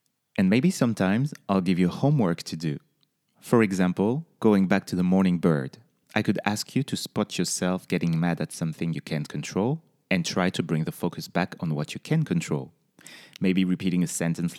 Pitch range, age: 90-120 Hz, 30-49